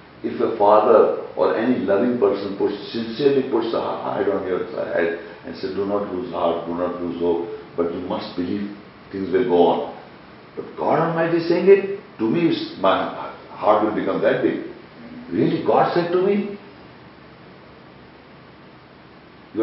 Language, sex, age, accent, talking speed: English, male, 60-79, Indian, 160 wpm